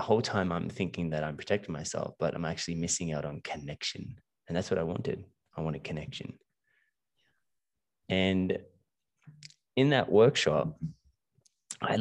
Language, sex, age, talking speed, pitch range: English, male, 20-39, 140 wpm, 85-110 Hz